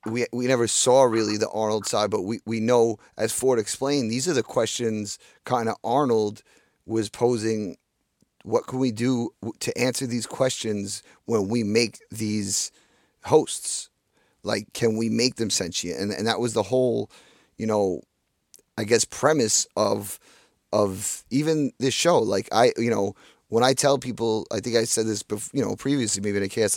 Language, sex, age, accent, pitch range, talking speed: English, male, 30-49, American, 105-120 Hz, 180 wpm